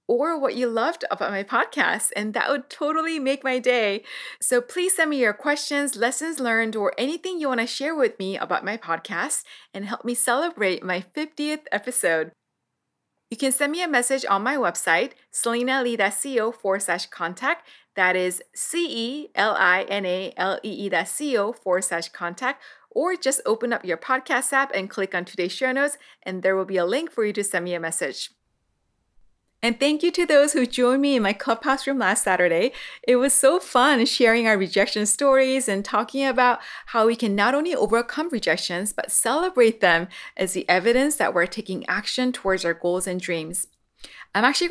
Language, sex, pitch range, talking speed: English, female, 195-275 Hz, 175 wpm